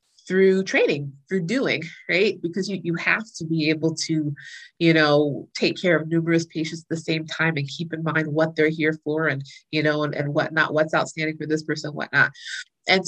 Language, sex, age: English, female, 30-49